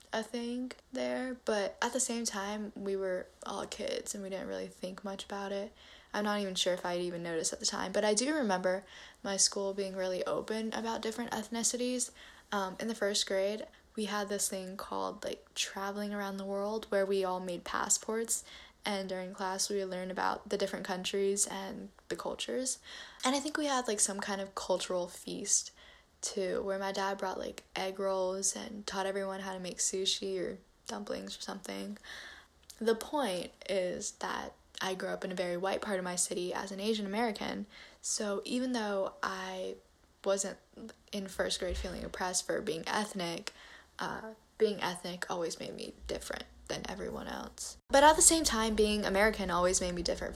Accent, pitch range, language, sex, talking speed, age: American, 185-220 Hz, English, female, 190 wpm, 10-29